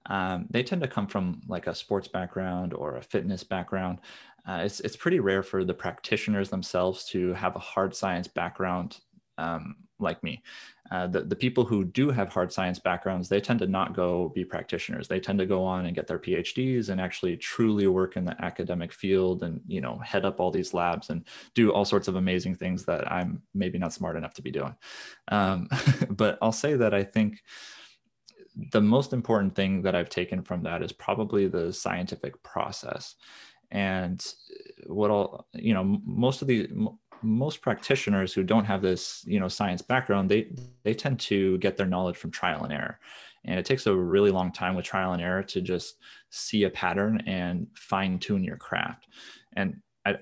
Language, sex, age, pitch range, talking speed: English, male, 20-39, 90-110 Hz, 195 wpm